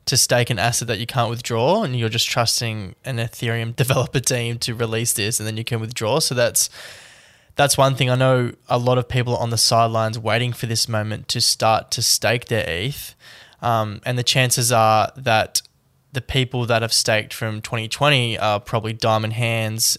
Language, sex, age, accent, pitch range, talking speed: English, male, 10-29, Australian, 115-125 Hz, 200 wpm